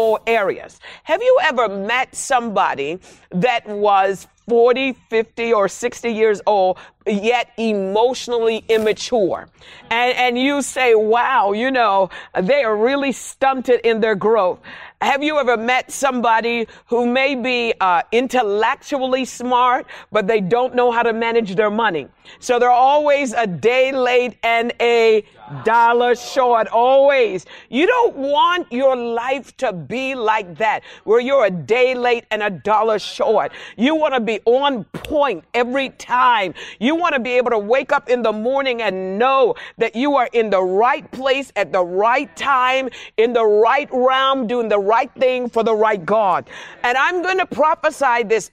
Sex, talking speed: female, 160 wpm